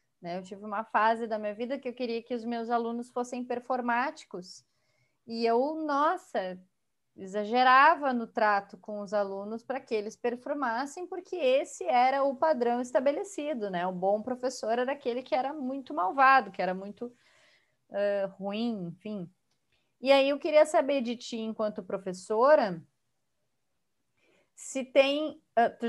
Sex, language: female, Portuguese